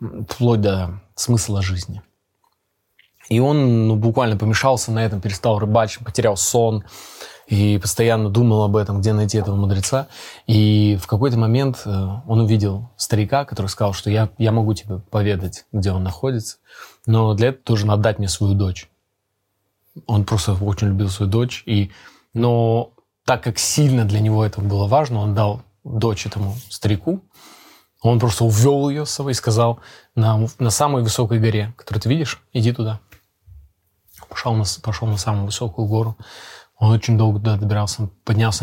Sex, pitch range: male, 105-115 Hz